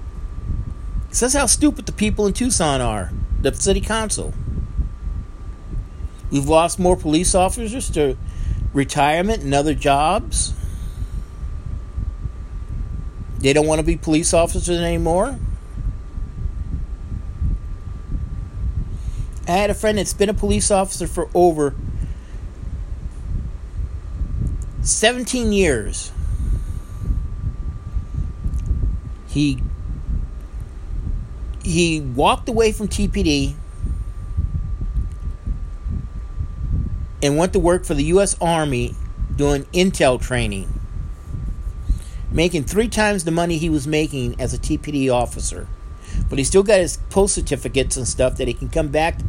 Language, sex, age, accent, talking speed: English, male, 50-69, American, 105 wpm